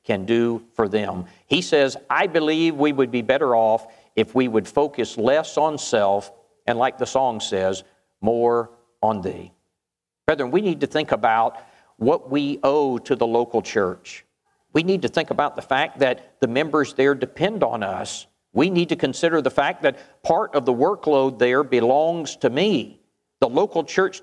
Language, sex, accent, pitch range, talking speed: English, male, American, 115-165 Hz, 180 wpm